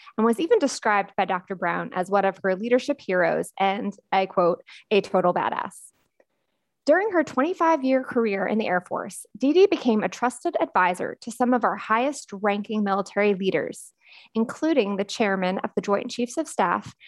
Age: 20-39